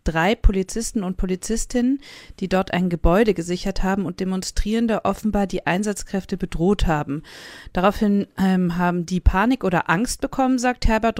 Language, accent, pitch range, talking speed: German, German, 170-205 Hz, 145 wpm